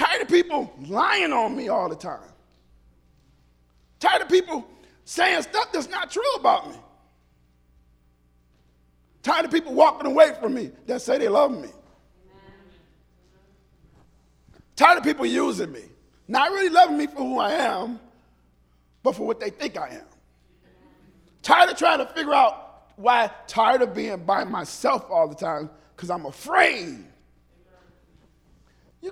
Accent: American